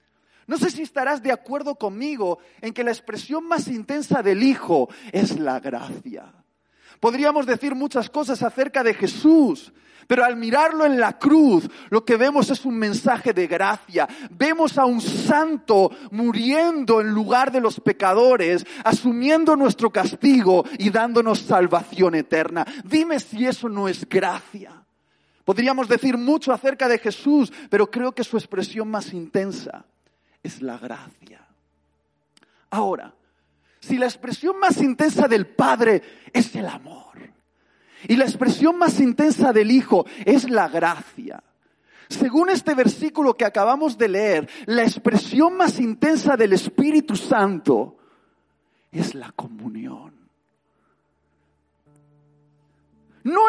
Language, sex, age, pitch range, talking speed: Spanish, male, 40-59, 205-285 Hz, 130 wpm